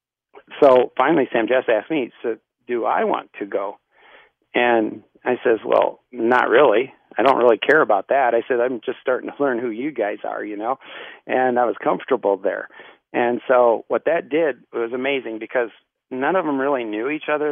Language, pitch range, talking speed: English, 115-150 Hz, 195 wpm